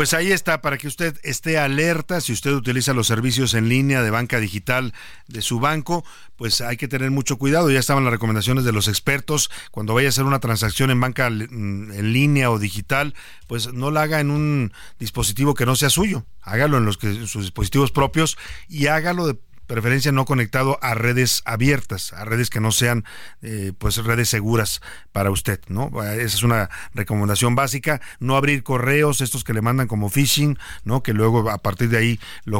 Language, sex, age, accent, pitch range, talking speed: Spanish, male, 50-69, Mexican, 110-140 Hz, 200 wpm